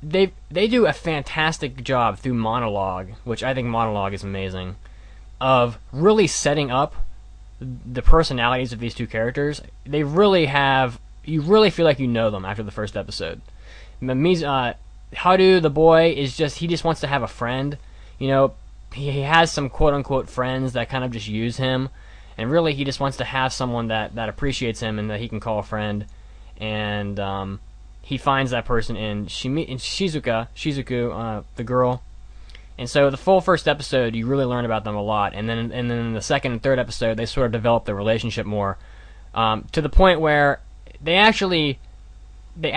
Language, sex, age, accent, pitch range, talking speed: English, male, 20-39, American, 110-140 Hz, 195 wpm